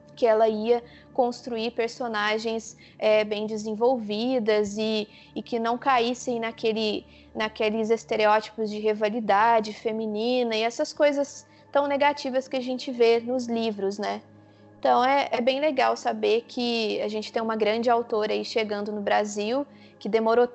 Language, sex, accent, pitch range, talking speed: Portuguese, female, Brazilian, 220-250 Hz, 145 wpm